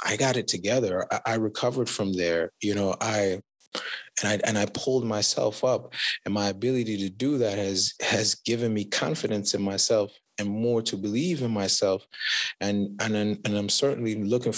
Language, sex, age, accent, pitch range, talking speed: English, male, 20-39, American, 100-120 Hz, 175 wpm